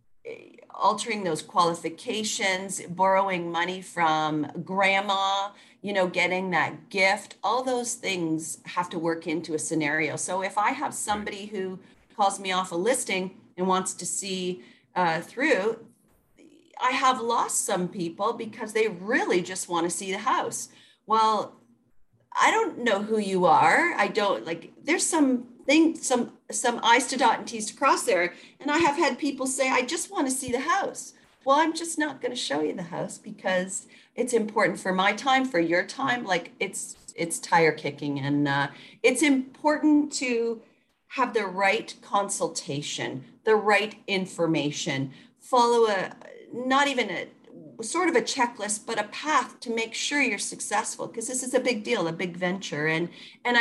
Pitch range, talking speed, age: 180-255 Hz, 170 wpm, 40-59